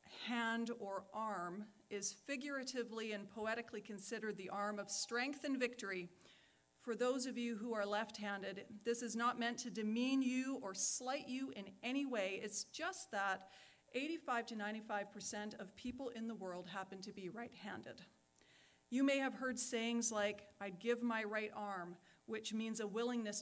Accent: American